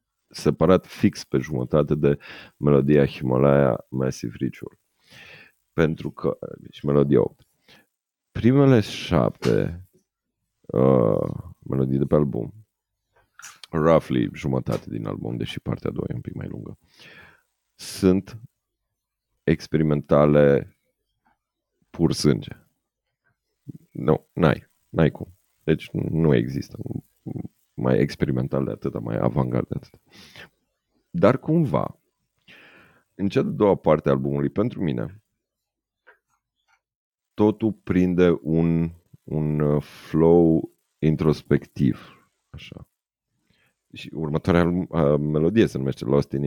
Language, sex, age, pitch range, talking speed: Romanian, male, 40-59, 70-95 Hz, 100 wpm